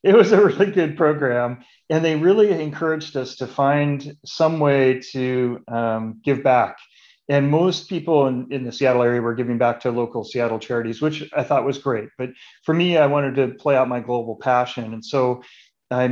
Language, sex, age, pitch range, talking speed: English, male, 40-59, 120-145 Hz, 195 wpm